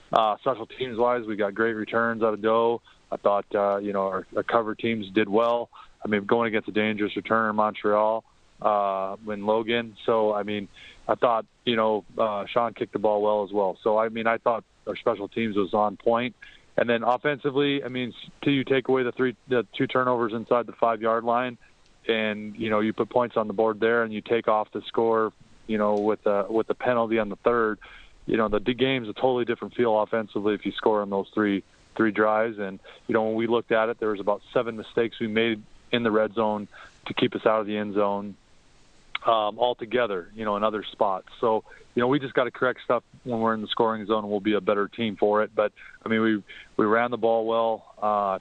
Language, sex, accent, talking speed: English, male, American, 235 wpm